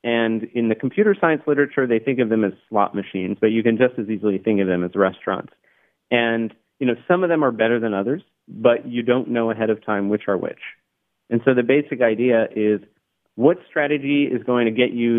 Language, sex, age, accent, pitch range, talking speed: English, male, 40-59, American, 110-135 Hz, 225 wpm